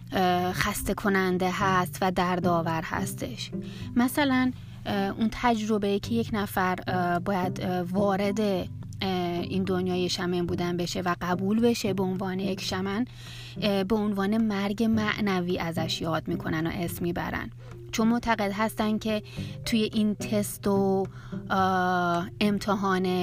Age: 30-49